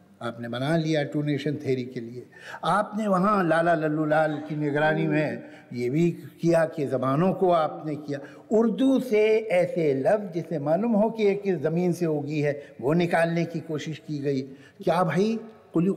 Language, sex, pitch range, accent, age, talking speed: Hindi, male, 155-225 Hz, native, 60-79, 175 wpm